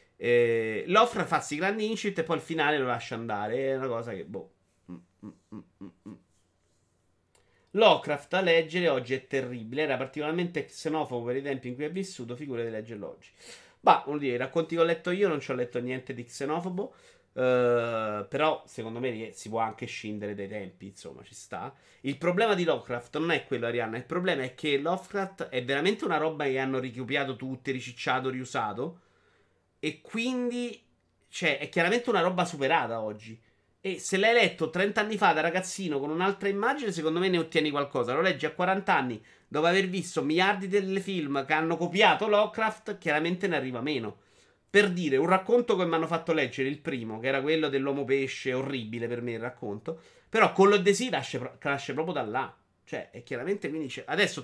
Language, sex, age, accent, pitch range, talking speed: Italian, male, 30-49, native, 120-180 Hz, 190 wpm